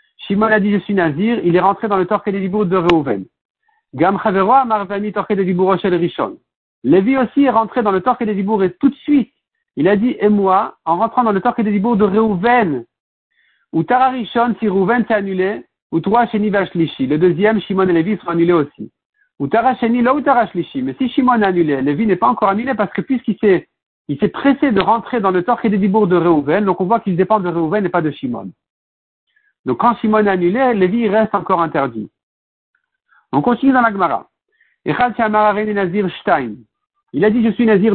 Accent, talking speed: French, 210 wpm